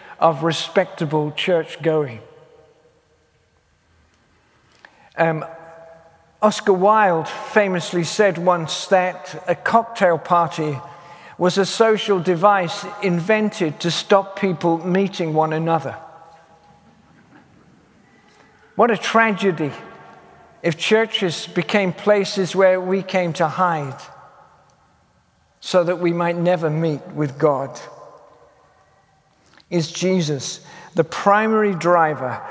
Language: English